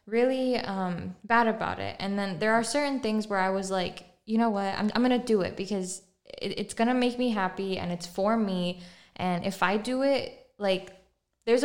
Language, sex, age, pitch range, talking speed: English, female, 10-29, 180-220 Hz, 210 wpm